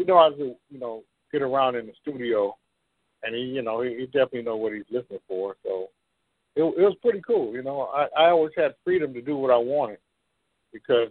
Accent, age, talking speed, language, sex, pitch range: American, 50-69, 225 wpm, English, male, 110-150 Hz